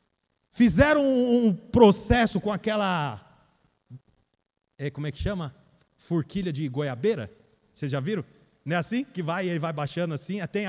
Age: 40-59